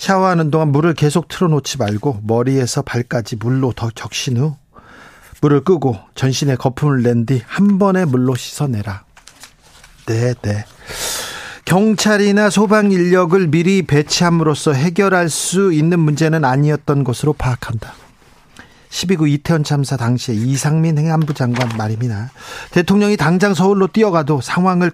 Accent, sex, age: native, male, 40-59